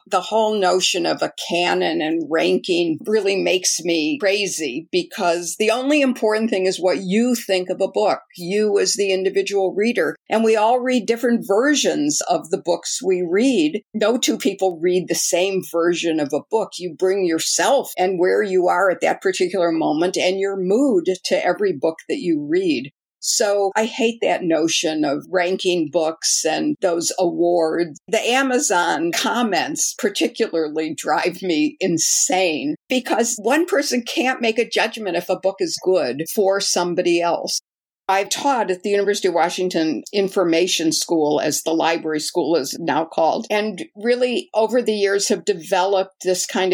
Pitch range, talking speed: 175-225 Hz, 165 wpm